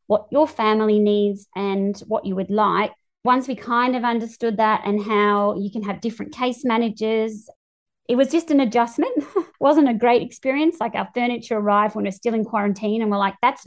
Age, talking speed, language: 20-39, 200 wpm, English